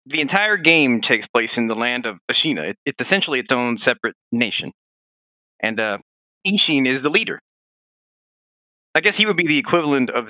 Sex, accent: male, American